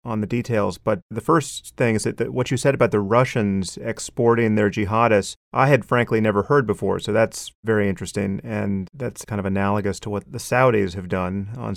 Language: English